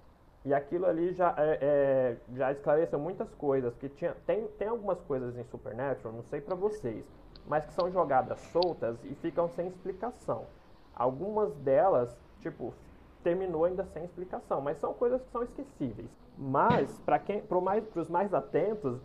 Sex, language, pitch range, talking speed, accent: male, Portuguese, 135-190 Hz, 160 wpm, Brazilian